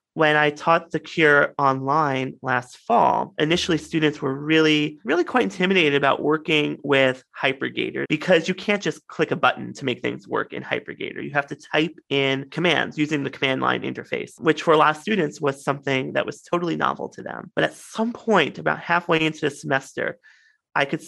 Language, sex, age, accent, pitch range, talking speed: English, male, 30-49, American, 145-170 Hz, 195 wpm